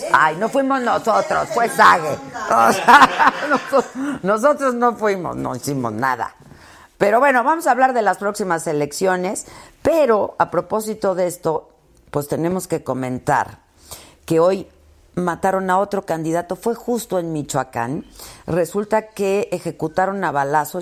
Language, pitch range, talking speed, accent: Spanish, 135-190 Hz, 130 wpm, Mexican